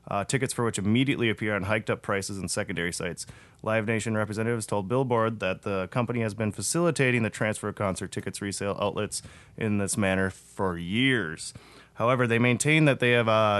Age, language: 30-49, English